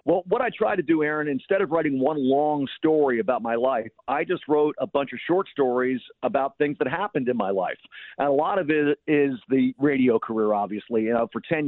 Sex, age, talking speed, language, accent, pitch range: male, 50-69, 230 wpm, English, American, 115-140 Hz